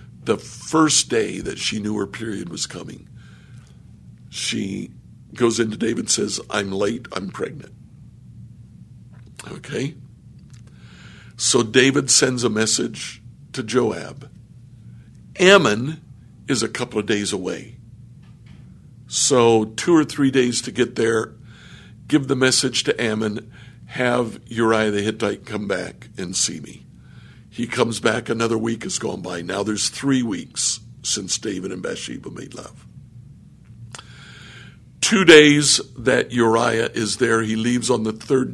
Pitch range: 110-130 Hz